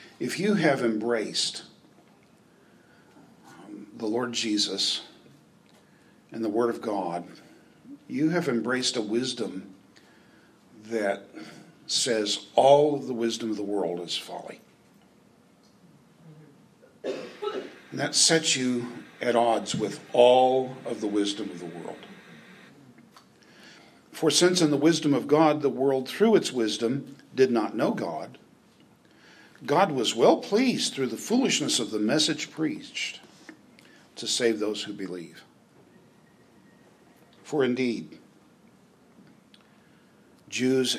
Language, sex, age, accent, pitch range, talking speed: English, male, 50-69, American, 110-155 Hz, 115 wpm